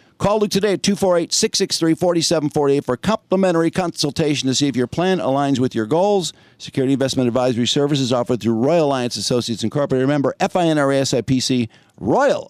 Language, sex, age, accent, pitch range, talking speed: English, male, 50-69, American, 125-175 Hz, 155 wpm